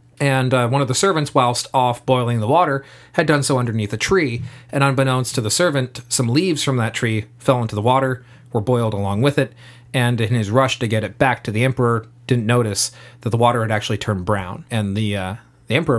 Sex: male